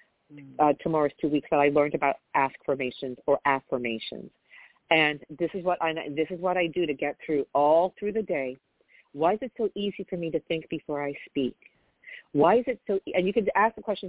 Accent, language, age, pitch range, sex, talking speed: American, English, 50-69, 140-185 Hz, female, 215 wpm